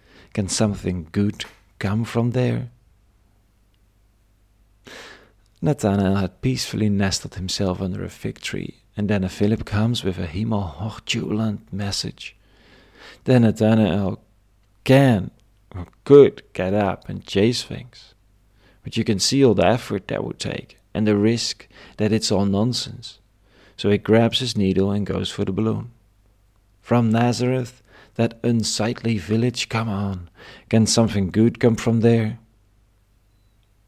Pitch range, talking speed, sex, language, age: 100-115 Hz, 130 wpm, male, English, 40-59